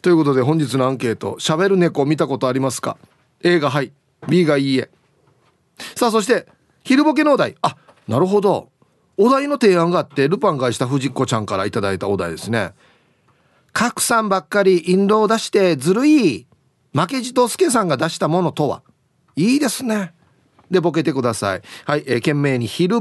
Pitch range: 130-195 Hz